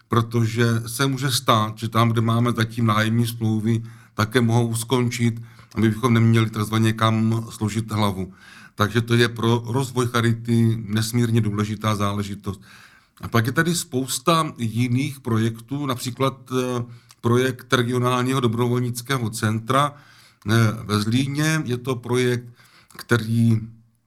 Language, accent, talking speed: Czech, native, 120 wpm